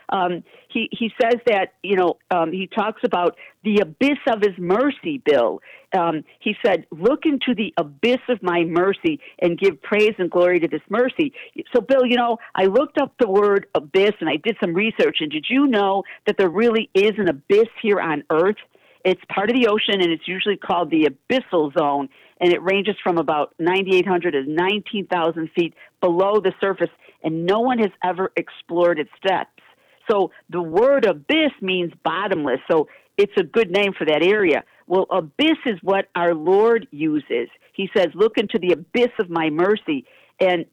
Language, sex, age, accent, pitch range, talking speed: English, female, 50-69, American, 175-235 Hz, 185 wpm